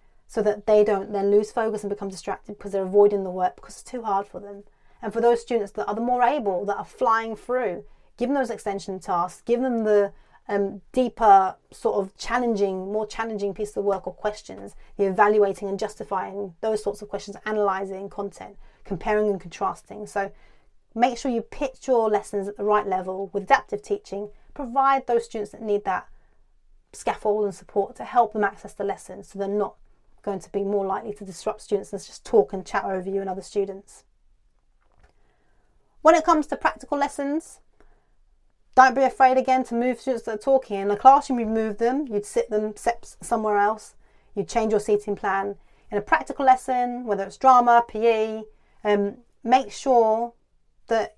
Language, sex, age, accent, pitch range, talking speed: English, female, 30-49, British, 200-235 Hz, 190 wpm